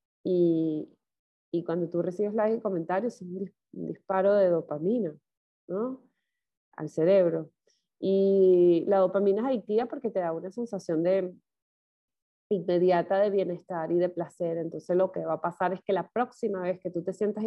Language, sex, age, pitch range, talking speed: Spanish, female, 20-39, 170-210 Hz, 170 wpm